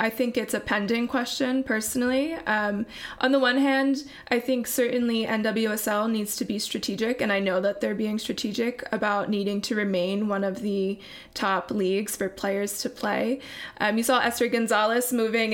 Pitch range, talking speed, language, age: 205-245 Hz, 180 wpm, English, 20-39